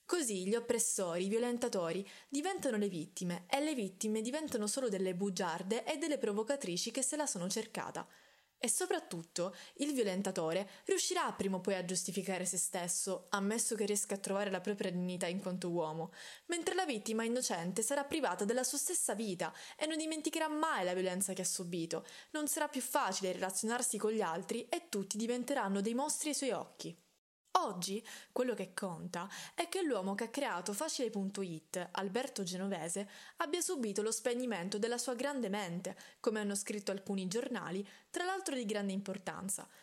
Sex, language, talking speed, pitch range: female, Italian, 170 wpm, 190-270 Hz